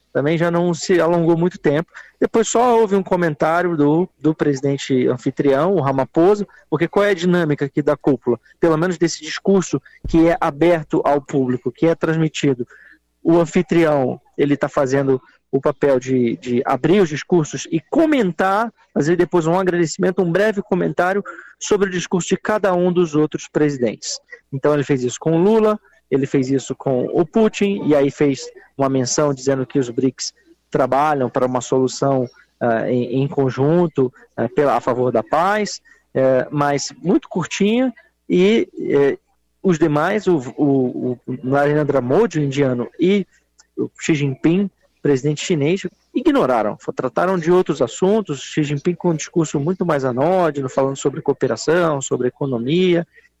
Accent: Brazilian